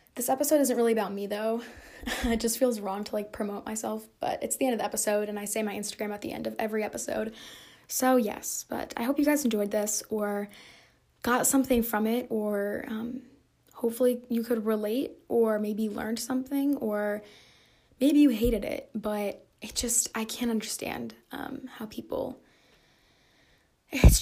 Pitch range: 210-250 Hz